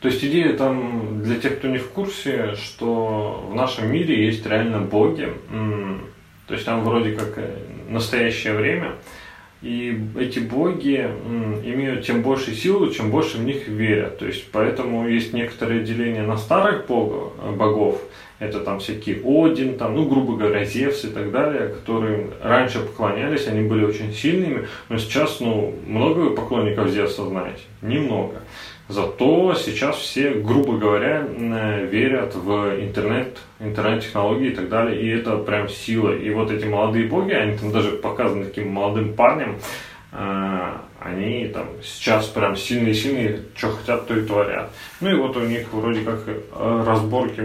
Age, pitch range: 30-49, 105-120 Hz